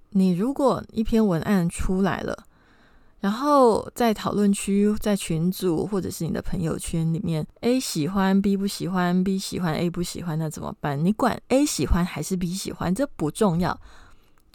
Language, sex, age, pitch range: Chinese, female, 20-39, 170-235 Hz